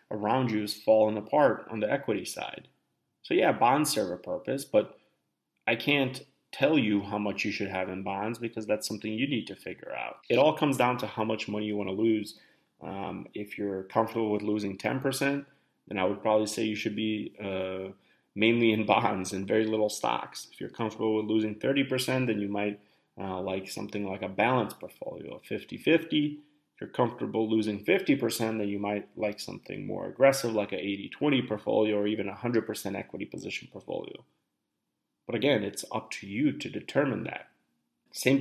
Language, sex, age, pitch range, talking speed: English, male, 30-49, 105-115 Hz, 195 wpm